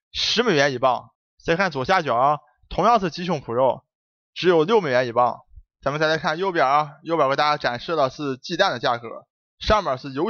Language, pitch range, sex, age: Chinese, 130-175 Hz, male, 20-39